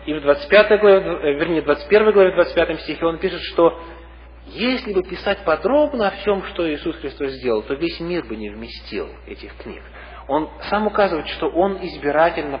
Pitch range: 135-195 Hz